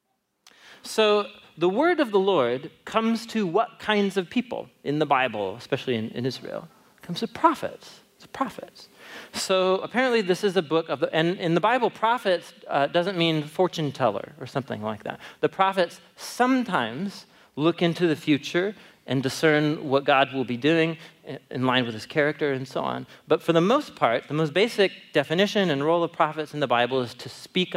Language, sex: English, male